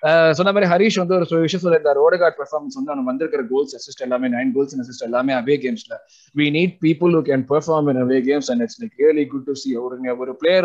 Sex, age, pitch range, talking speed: male, 20-39, 135-175 Hz, 205 wpm